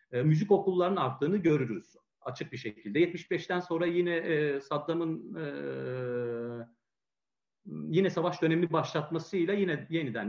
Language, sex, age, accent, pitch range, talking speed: Turkish, male, 40-59, native, 125-170 Hz, 115 wpm